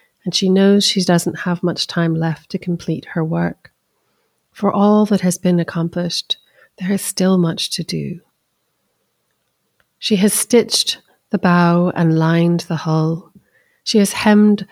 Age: 30-49